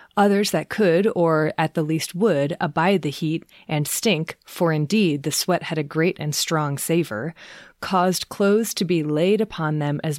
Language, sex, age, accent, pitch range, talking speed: English, female, 30-49, American, 155-190 Hz, 185 wpm